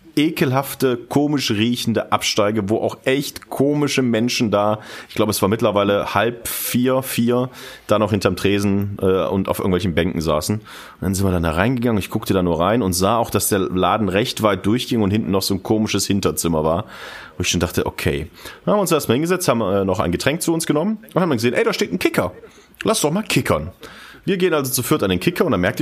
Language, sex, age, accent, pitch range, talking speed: German, male, 30-49, German, 100-135 Hz, 230 wpm